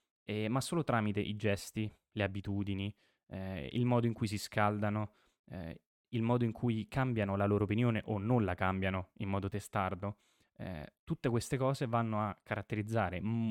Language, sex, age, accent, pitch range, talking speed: Italian, male, 20-39, native, 95-115 Hz, 170 wpm